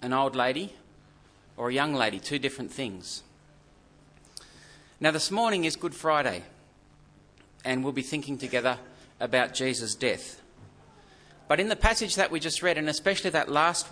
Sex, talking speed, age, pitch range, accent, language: male, 155 wpm, 40-59, 140-170 Hz, Australian, English